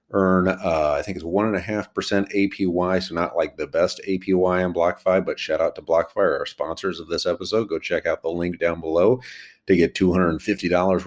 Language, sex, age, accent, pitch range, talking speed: English, male, 40-59, American, 80-95 Hz, 210 wpm